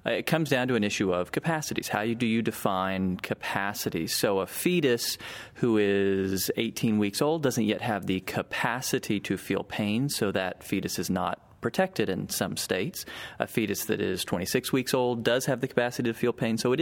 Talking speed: 195 wpm